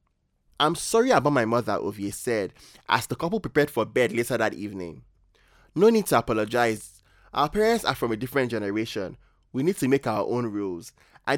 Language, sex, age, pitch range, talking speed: English, male, 20-39, 105-145 Hz, 185 wpm